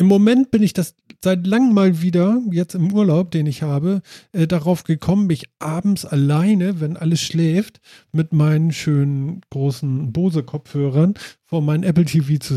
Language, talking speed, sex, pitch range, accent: German, 160 wpm, male, 140-180 Hz, German